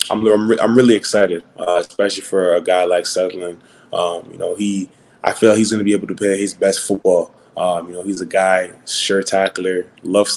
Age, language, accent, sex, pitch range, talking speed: 20-39, English, American, male, 90-100 Hz, 220 wpm